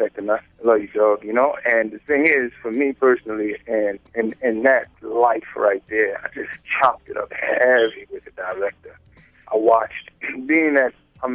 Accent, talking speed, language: American, 190 wpm, English